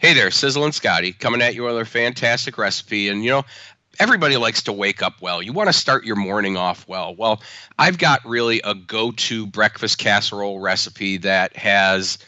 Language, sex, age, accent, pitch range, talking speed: English, male, 40-59, American, 105-125 Hz, 195 wpm